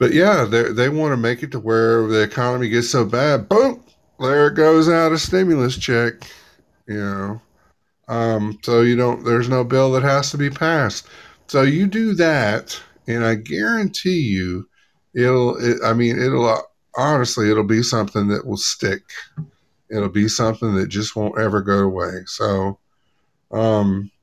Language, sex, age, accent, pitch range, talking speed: English, male, 50-69, American, 110-135 Hz, 170 wpm